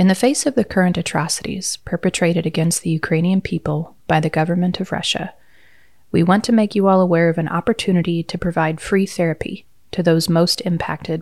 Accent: American